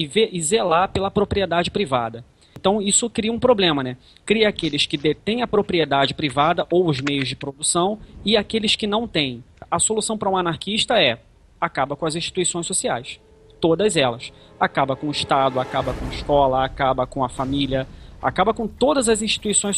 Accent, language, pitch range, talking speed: Brazilian, Portuguese, 145-205 Hz, 180 wpm